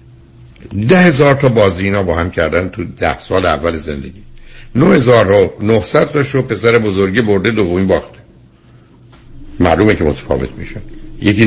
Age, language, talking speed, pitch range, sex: 60-79, Persian, 140 wpm, 95-130 Hz, male